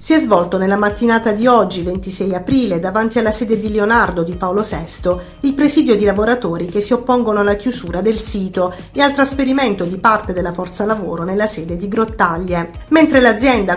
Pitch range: 185-240 Hz